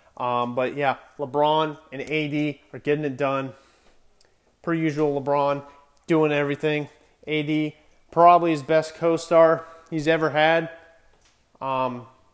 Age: 30-49